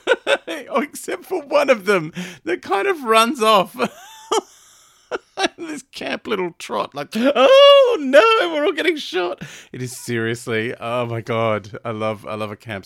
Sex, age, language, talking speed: male, 30-49, English, 155 wpm